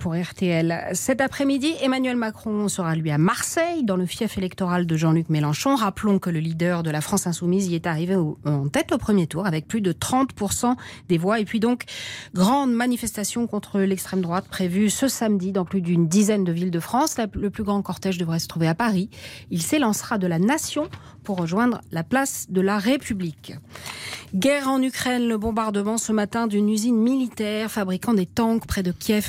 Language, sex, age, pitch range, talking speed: French, female, 40-59, 175-225 Hz, 195 wpm